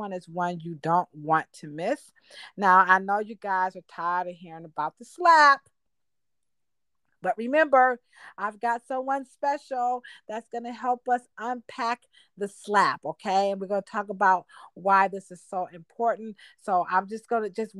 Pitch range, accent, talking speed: 180-235 Hz, American, 170 wpm